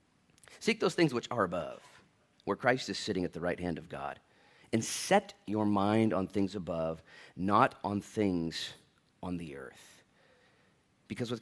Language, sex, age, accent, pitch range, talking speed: English, male, 30-49, American, 100-130 Hz, 165 wpm